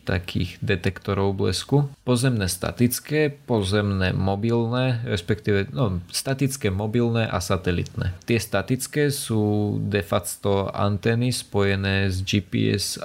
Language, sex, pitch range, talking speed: Slovak, male, 95-110 Hz, 90 wpm